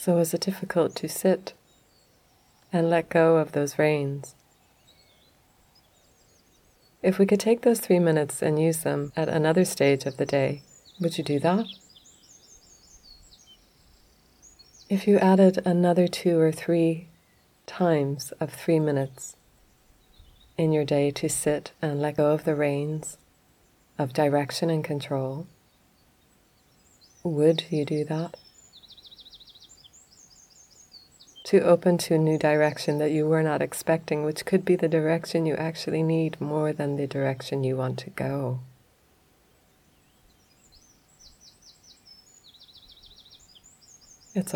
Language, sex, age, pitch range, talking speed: English, female, 30-49, 145-170 Hz, 120 wpm